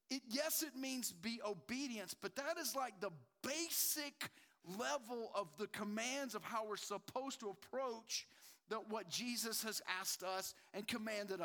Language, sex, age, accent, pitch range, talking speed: English, male, 40-59, American, 210-295 Hz, 155 wpm